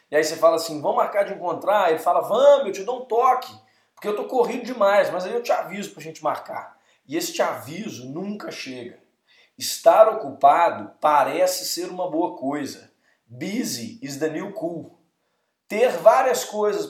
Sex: male